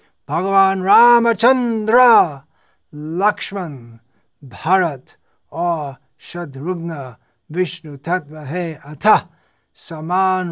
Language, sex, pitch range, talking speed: Hindi, male, 155-185 Hz, 65 wpm